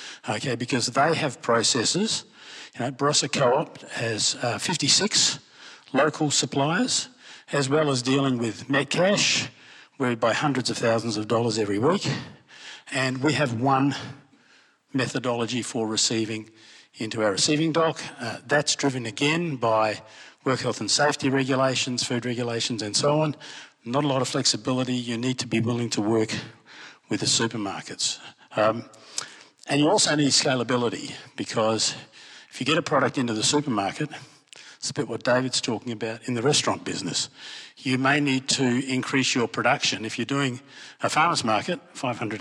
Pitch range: 115-140 Hz